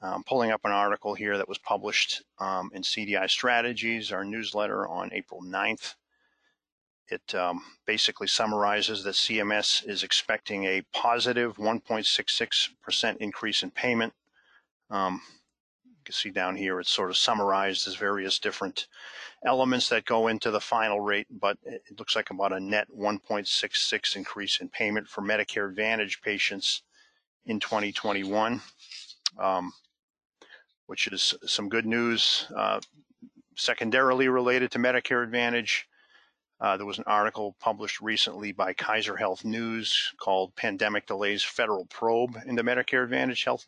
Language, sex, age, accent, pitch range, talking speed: English, male, 40-59, American, 100-120 Hz, 140 wpm